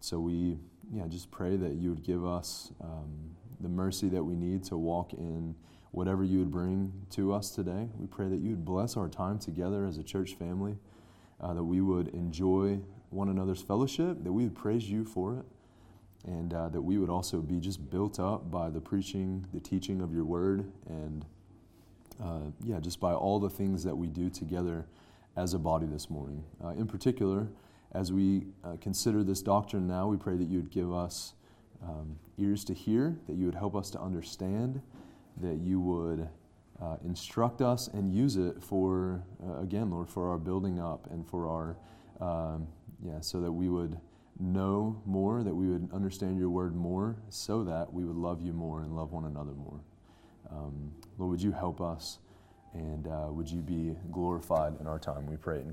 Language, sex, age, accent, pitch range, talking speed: English, male, 30-49, American, 85-100 Hz, 195 wpm